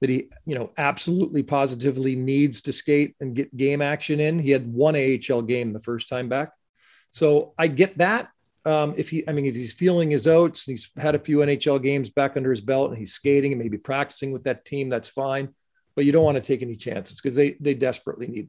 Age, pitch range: 40-59, 130-160 Hz